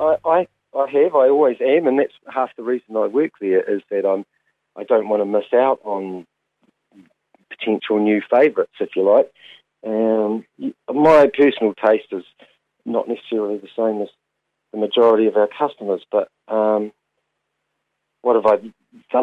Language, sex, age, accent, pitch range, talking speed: English, male, 40-59, Australian, 105-145 Hz, 160 wpm